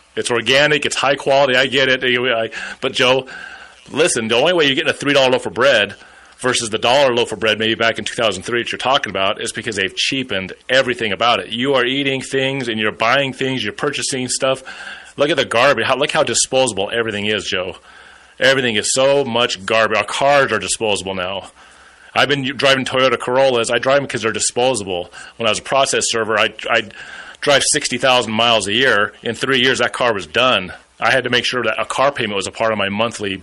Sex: male